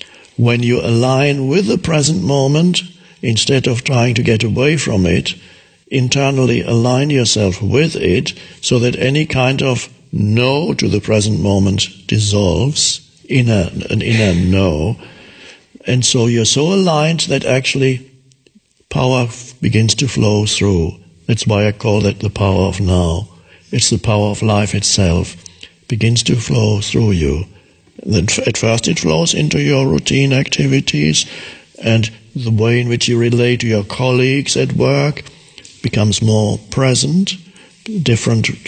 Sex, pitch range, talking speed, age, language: male, 105-135 Hz, 140 wpm, 60-79, English